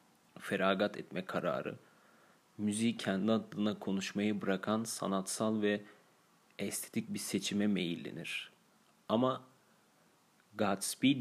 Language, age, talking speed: Turkish, 40-59, 85 wpm